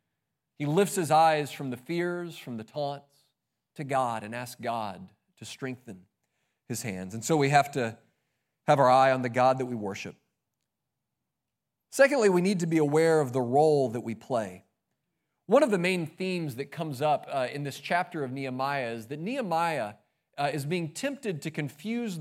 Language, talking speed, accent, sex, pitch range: English, 185 wpm, American, male, 135-180 Hz